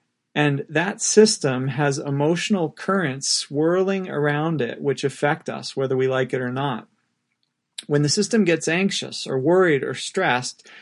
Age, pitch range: 40-59, 135-165 Hz